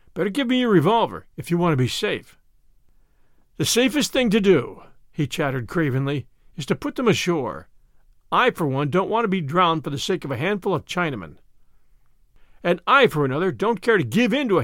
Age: 50-69